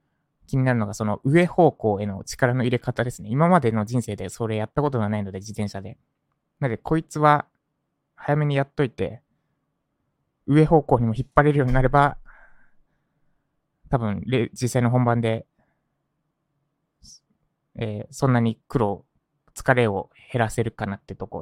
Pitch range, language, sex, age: 110-145 Hz, Japanese, male, 20-39